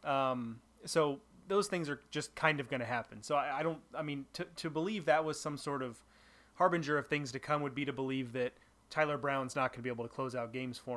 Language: English